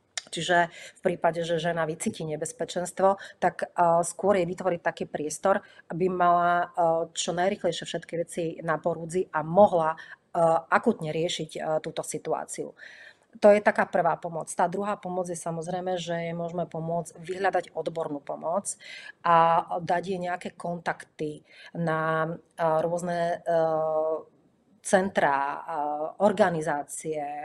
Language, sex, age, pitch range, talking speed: Czech, female, 30-49, 160-180 Hz, 115 wpm